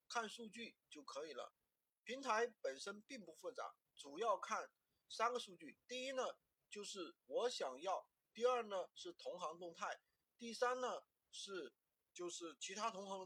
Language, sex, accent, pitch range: Chinese, male, native, 195-255 Hz